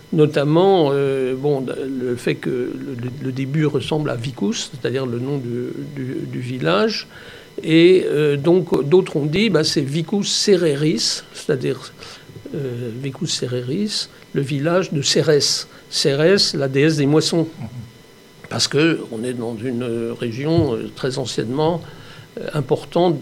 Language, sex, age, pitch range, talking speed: French, male, 60-79, 130-165 Hz, 135 wpm